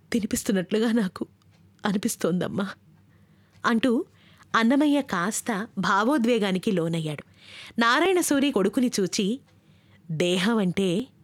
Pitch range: 170-220 Hz